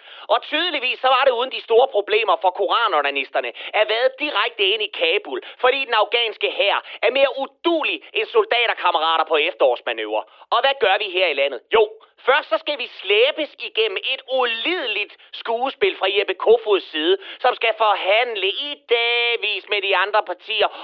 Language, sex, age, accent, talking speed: Danish, male, 30-49, native, 165 wpm